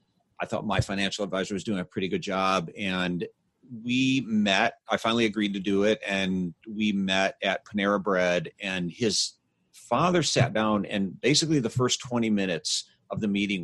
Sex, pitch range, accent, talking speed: male, 100-140 Hz, American, 175 wpm